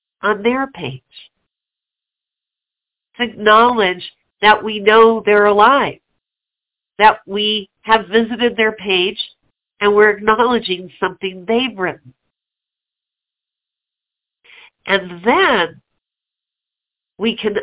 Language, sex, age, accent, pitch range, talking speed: English, female, 50-69, American, 180-225 Hz, 90 wpm